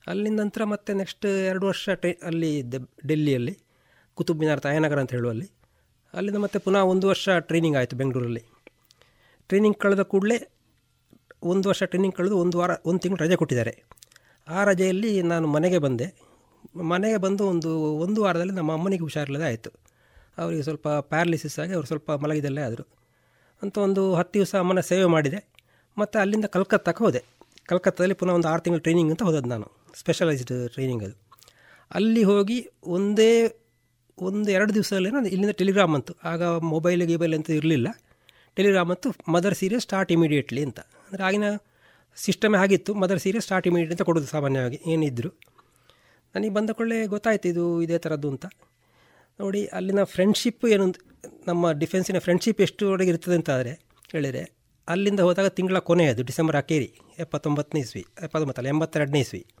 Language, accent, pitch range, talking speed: Kannada, native, 150-195 Hz, 145 wpm